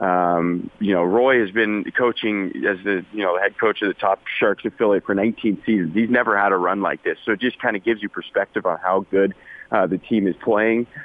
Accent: American